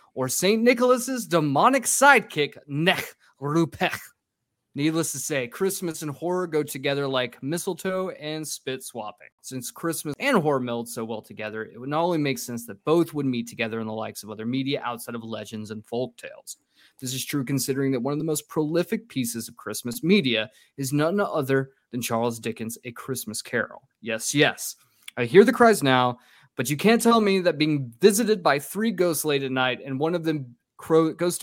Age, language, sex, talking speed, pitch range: 20-39, English, male, 190 wpm, 125-180 Hz